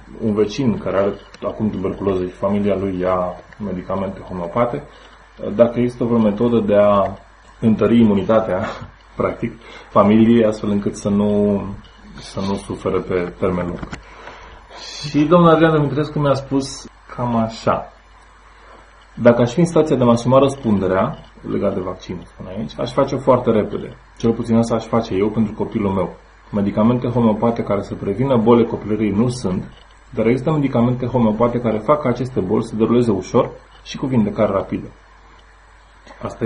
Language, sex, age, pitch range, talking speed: Romanian, male, 20-39, 105-120 Hz, 150 wpm